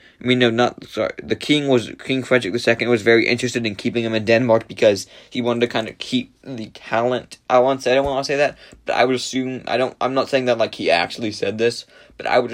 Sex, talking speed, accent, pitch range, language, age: male, 270 wpm, American, 110-130 Hz, English, 20-39